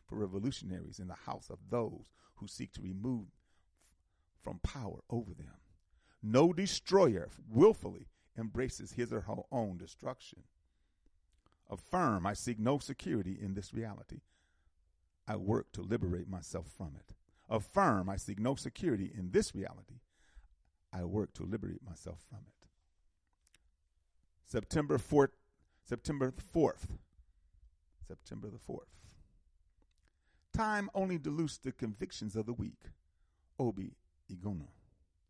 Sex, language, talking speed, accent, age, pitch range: male, English, 120 wpm, American, 40-59, 85-130 Hz